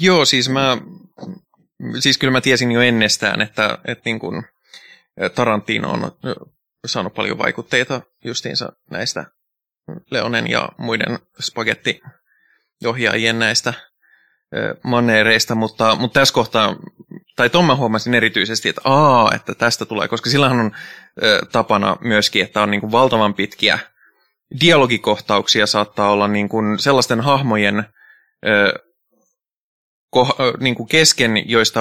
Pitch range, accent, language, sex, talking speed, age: 110-130 Hz, native, Finnish, male, 115 wpm, 20-39